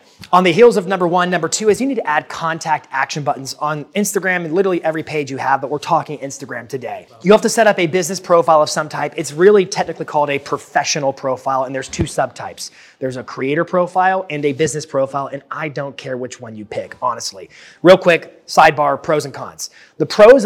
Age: 30-49